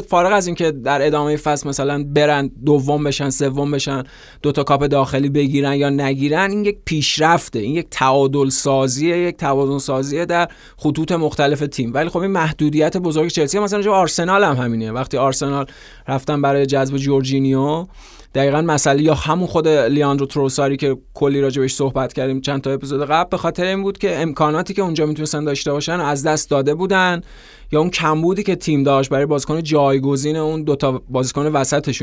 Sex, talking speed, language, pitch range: male, 180 wpm, Persian, 140-160 Hz